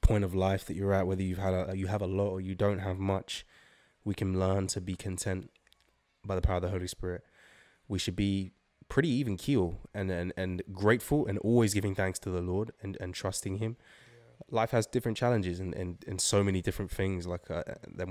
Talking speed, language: 220 wpm, English